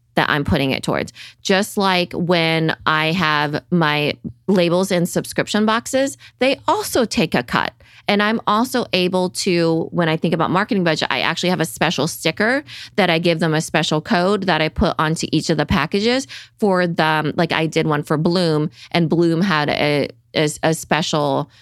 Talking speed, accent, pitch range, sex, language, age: 185 wpm, American, 155-190 Hz, female, English, 20-39